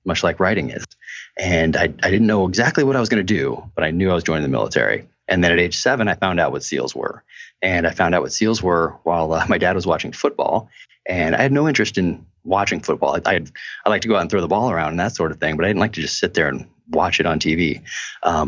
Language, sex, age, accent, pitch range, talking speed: English, male, 30-49, American, 85-110 Hz, 285 wpm